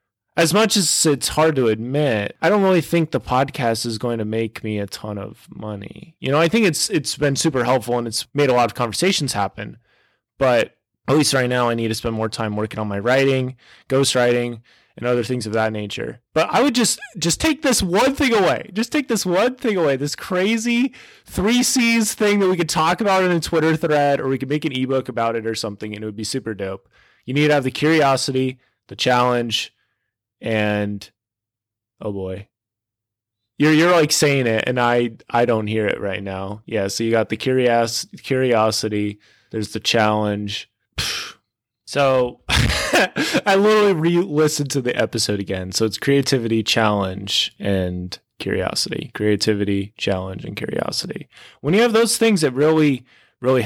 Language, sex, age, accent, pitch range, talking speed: English, male, 20-39, American, 110-150 Hz, 185 wpm